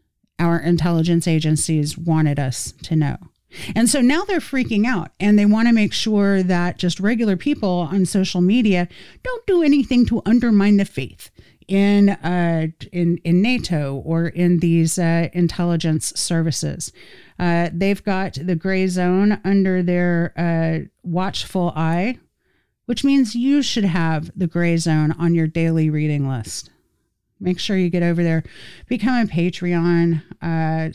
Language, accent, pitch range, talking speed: English, American, 160-195 Hz, 150 wpm